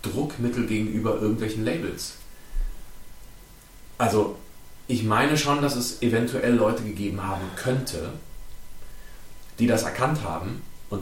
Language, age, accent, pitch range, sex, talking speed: German, 30-49, German, 95-115 Hz, male, 110 wpm